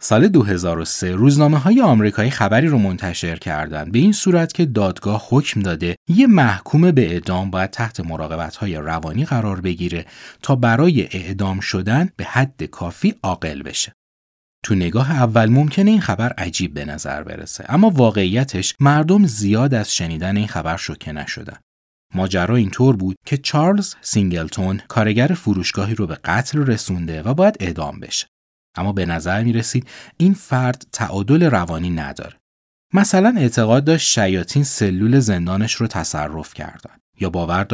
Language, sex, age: Persian, male, 30-49